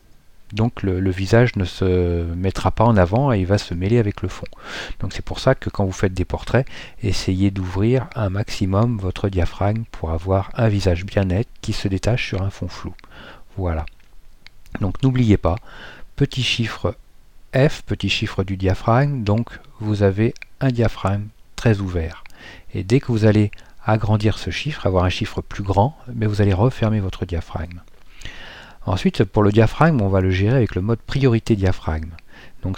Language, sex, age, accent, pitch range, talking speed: French, male, 40-59, French, 95-115 Hz, 180 wpm